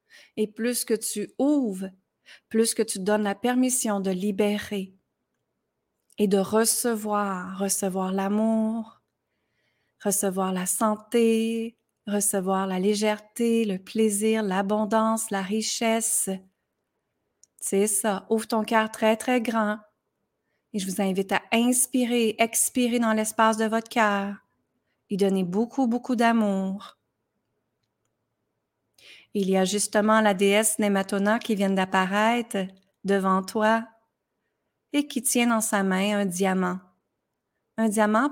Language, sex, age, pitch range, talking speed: French, female, 30-49, 195-225 Hz, 120 wpm